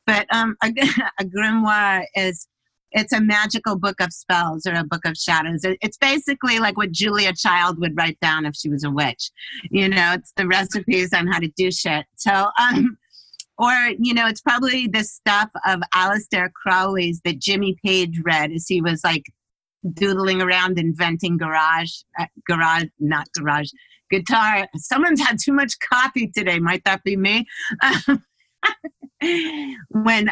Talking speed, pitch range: 160 wpm, 170-215 Hz